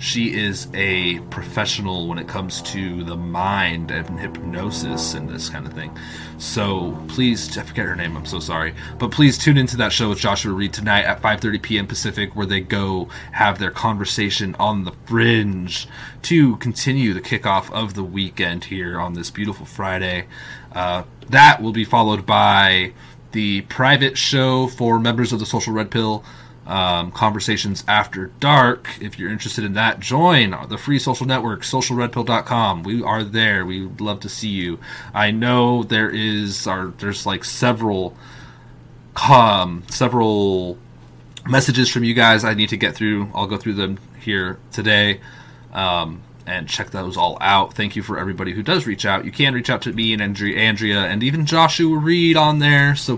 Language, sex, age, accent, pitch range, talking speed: English, male, 20-39, American, 95-120 Hz, 175 wpm